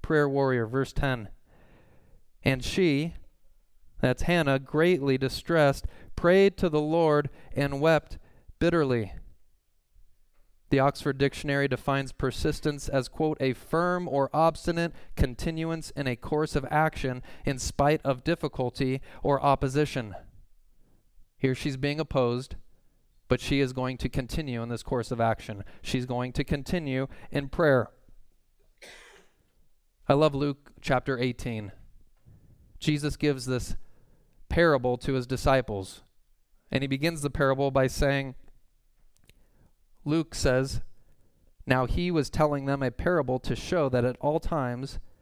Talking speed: 125 wpm